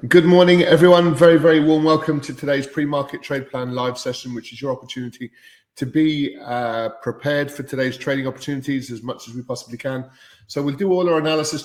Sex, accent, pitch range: male, British, 115-140 Hz